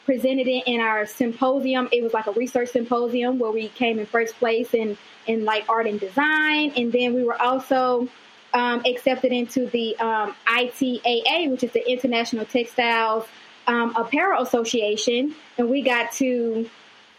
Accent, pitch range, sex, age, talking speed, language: American, 225-255 Hz, female, 20-39, 165 wpm, English